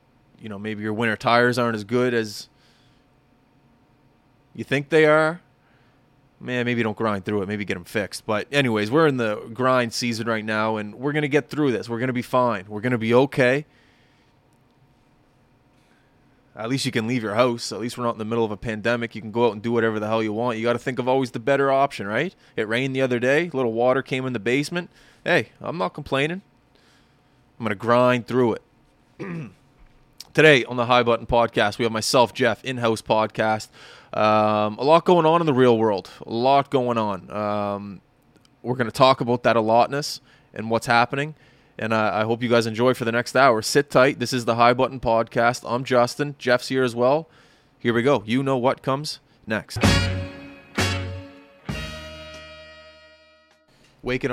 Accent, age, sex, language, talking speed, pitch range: American, 20-39, male, English, 200 wpm, 110-135 Hz